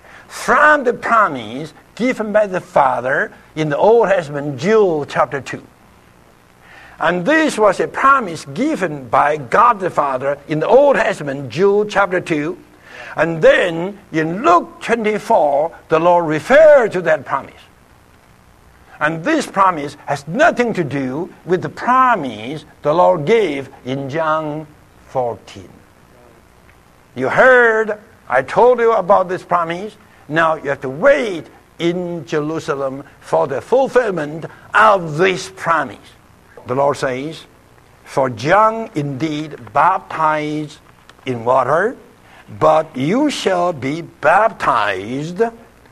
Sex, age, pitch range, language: male, 60-79, 145-220 Hz, English